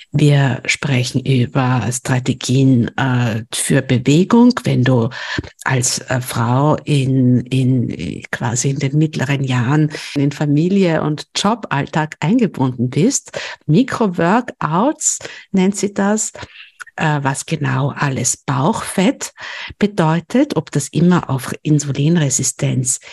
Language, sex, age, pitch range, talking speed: German, female, 60-79, 130-165 Hz, 100 wpm